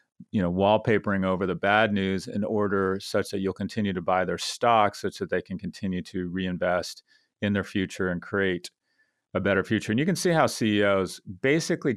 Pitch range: 90-110 Hz